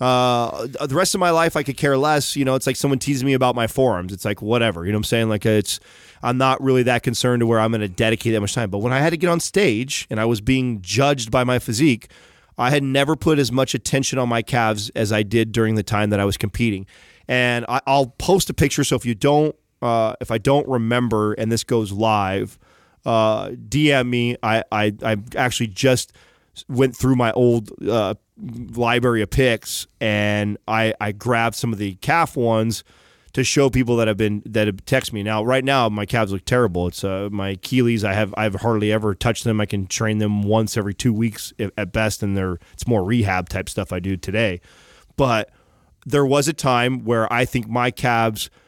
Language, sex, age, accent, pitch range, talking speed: English, male, 30-49, American, 105-130 Hz, 225 wpm